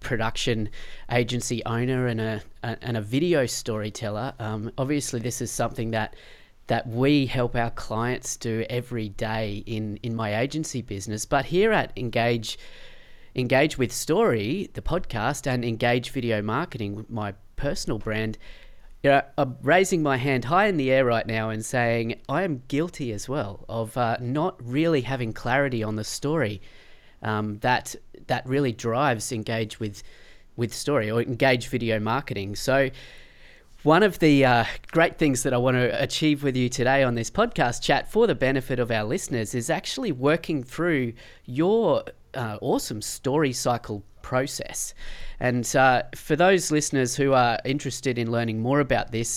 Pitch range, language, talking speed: 115-140 Hz, English, 165 wpm